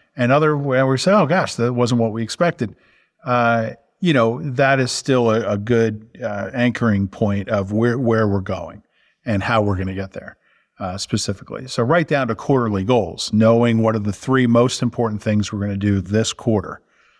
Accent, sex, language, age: American, male, English, 50-69